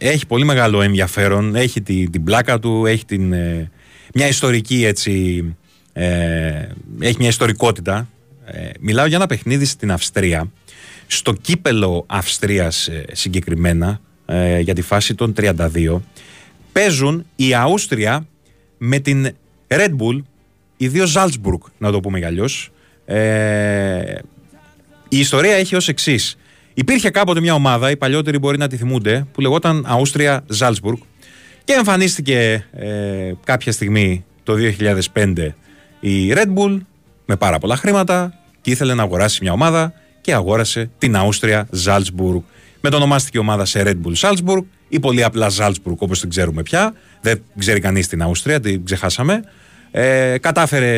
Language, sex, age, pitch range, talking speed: Greek, male, 30-49, 95-140 Hz, 140 wpm